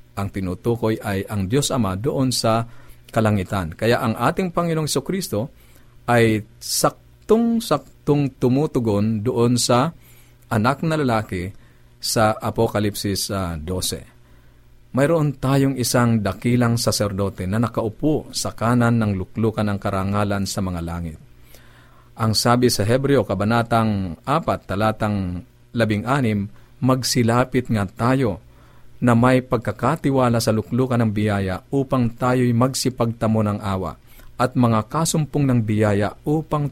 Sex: male